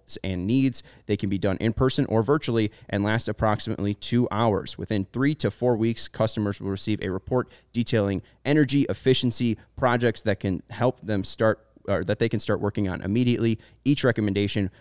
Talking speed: 180 wpm